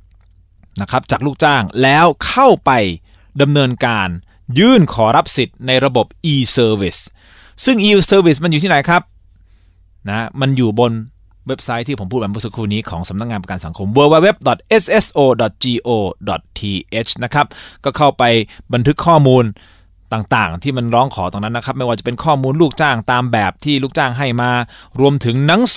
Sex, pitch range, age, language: male, 105-160 Hz, 20-39, Thai